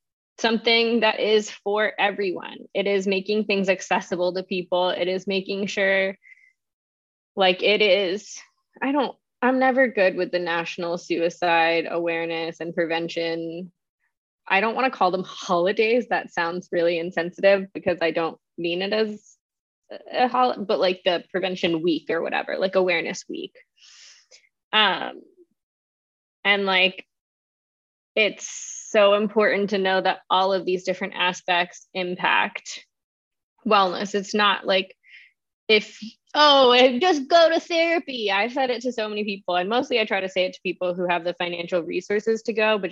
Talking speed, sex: 150 wpm, female